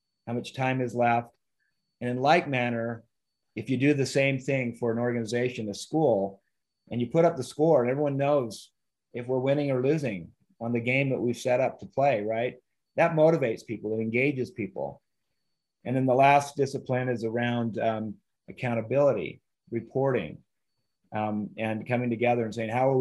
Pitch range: 115-135 Hz